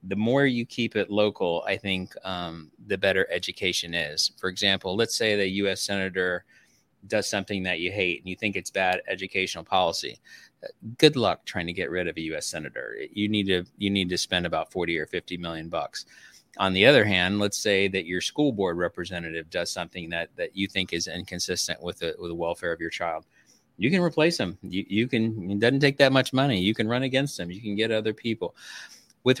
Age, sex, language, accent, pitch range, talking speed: 30-49, male, English, American, 90-110 Hz, 210 wpm